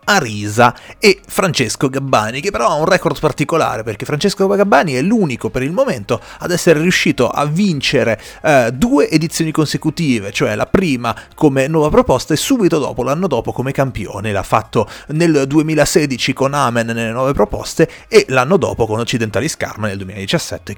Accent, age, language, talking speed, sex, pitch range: native, 30-49, Italian, 160 wpm, male, 110-155 Hz